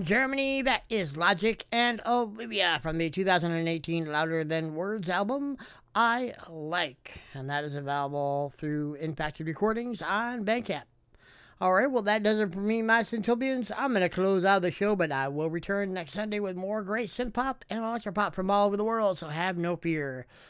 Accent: American